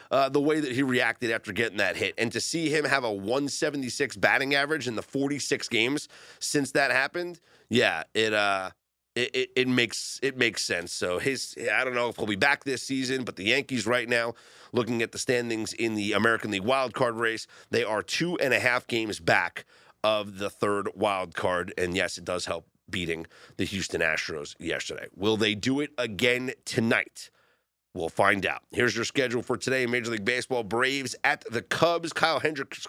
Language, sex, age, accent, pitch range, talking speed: English, male, 30-49, American, 115-155 Hz, 195 wpm